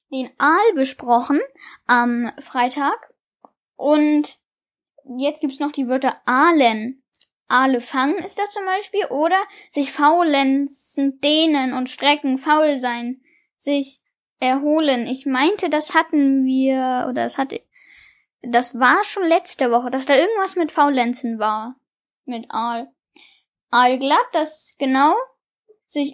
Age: 10-29